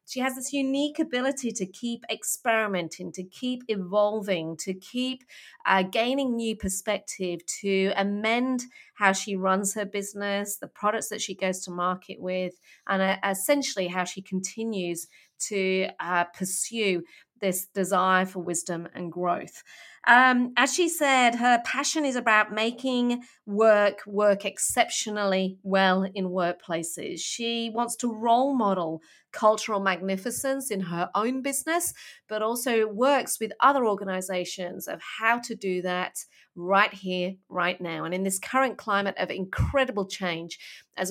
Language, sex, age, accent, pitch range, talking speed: English, female, 40-59, British, 185-240 Hz, 140 wpm